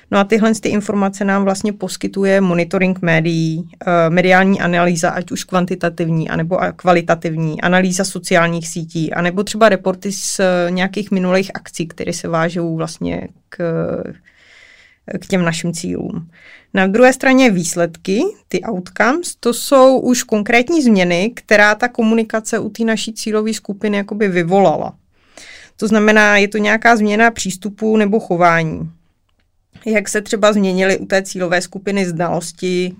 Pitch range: 175-215 Hz